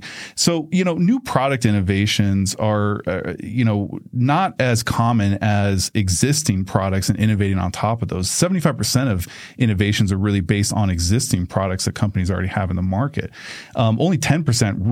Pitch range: 100-120 Hz